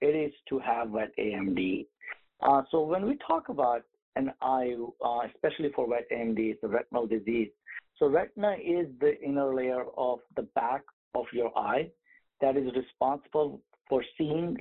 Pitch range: 130-185 Hz